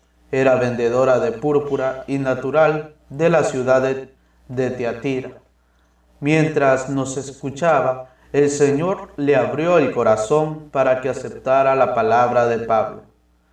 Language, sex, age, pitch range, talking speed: Spanish, male, 30-49, 115-145 Hz, 125 wpm